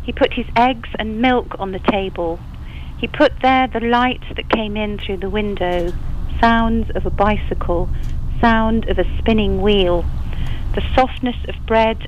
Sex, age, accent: female, 40-59, British